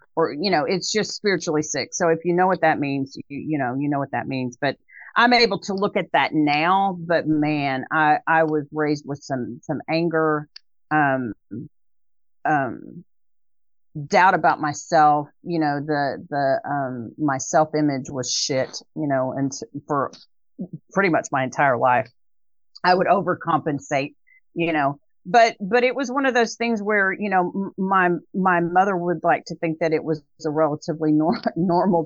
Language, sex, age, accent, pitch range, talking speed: English, female, 40-59, American, 145-190 Hz, 175 wpm